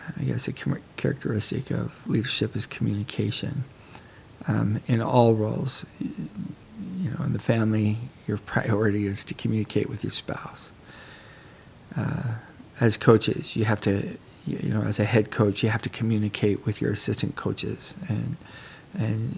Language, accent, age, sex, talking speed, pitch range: English, American, 40-59, male, 145 wpm, 100-115 Hz